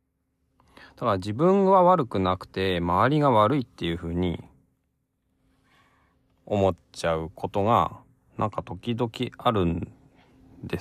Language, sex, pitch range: Japanese, male, 90-125 Hz